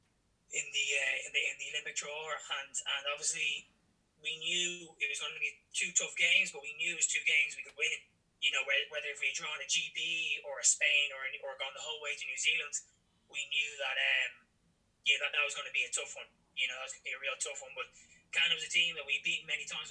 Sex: male